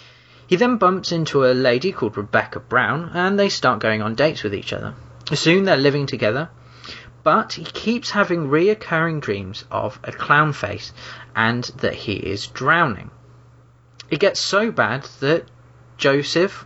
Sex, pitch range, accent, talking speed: male, 115-165 Hz, British, 155 wpm